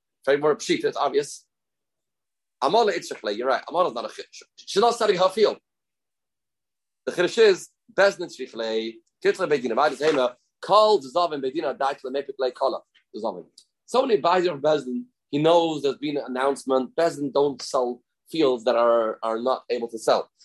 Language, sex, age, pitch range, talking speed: English, male, 30-49, 130-185 Hz, 160 wpm